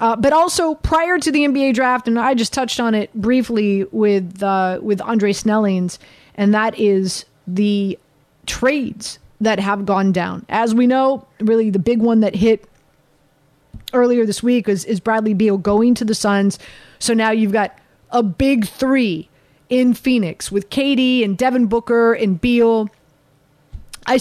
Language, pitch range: English, 205-250 Hz